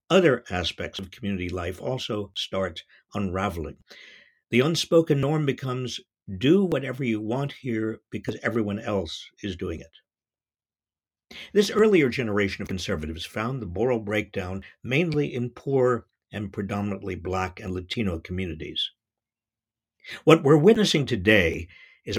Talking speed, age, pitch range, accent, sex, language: 125 wpm, 60-79, 100-140 Hz, American, male, English